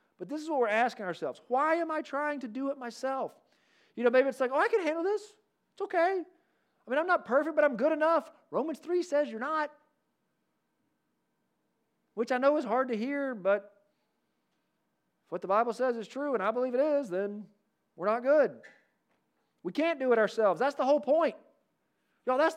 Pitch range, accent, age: 220-310 Hz, American, 40-59